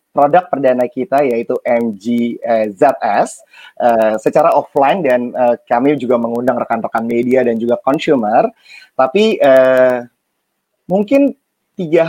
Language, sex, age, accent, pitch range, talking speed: Indonesian, male, 30-49, native, 115-150 Hz, 120 wpm